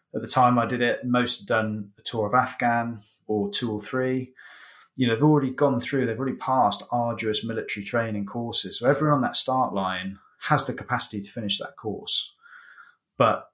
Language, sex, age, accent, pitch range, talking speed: English, male, 20-39, British, 100-120 Hz, 195 wpm